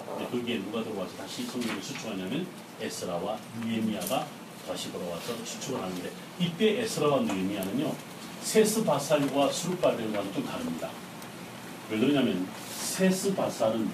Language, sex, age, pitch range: Korean, male, 40-59, 135-195 Hz